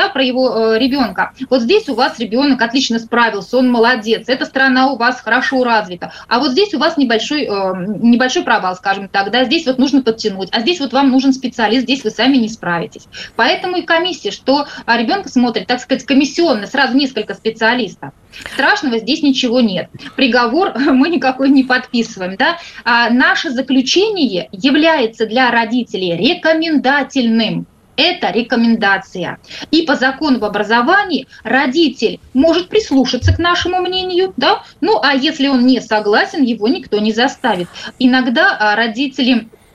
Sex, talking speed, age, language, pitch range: female, 150 wpm, 20-39, Russian, 230-280 Hz